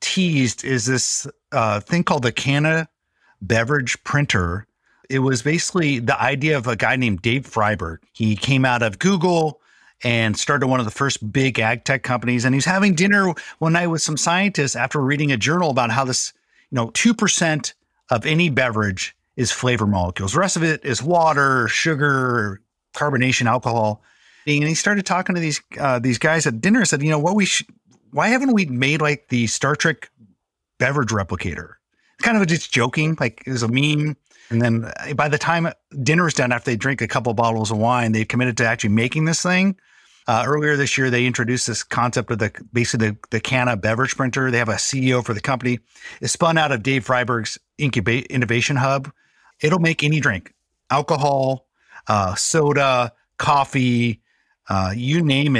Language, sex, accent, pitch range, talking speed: English, male, American, 120-155 Hz, 190 wpm